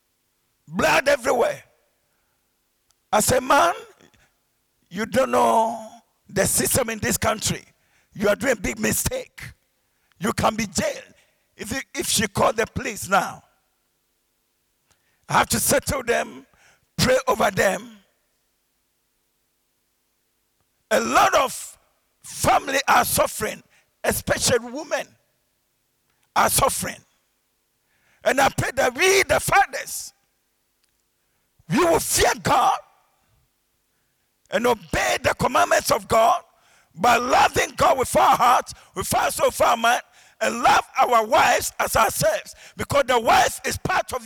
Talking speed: 120 wpm